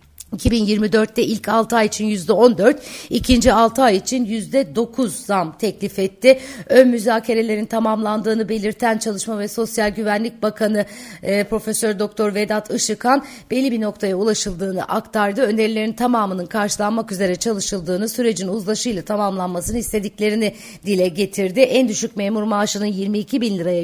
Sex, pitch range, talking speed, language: female, 195-230 Hz, 135 wpm, Turkish